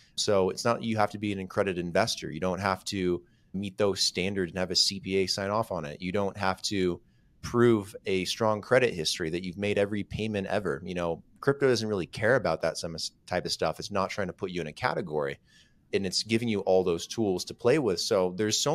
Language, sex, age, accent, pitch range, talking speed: English, male, 30-49, American, 90-115 Hz, 235 wpm